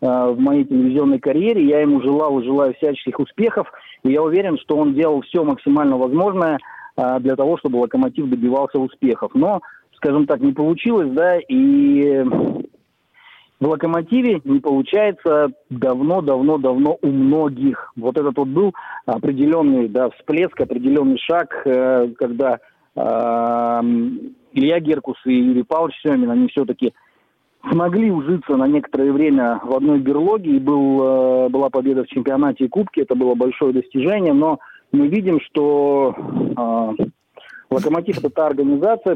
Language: Russian